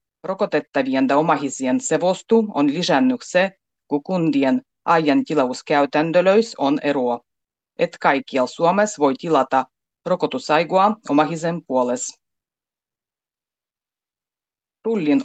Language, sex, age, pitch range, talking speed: Finnish, female, 30-49, 135-185 Hz, 80 wpm